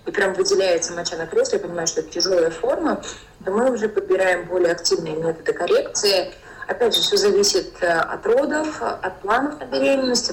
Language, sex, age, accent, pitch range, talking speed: Russian, female, 20-39, native, 175-265 Hz, 175 wpm